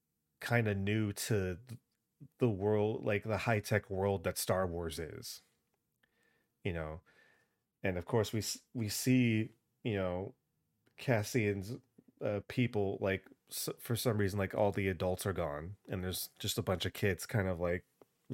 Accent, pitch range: American, 95-115 Hz